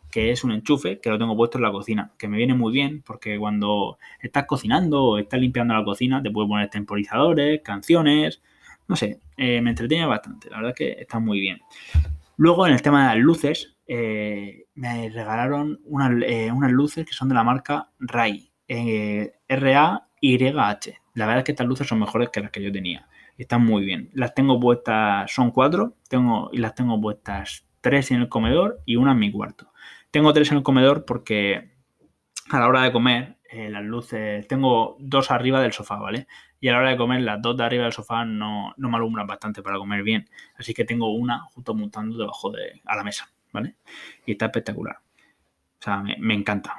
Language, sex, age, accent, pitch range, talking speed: Spanish, male, 20-39, Spanish, 105-130 Hz, 210 wpm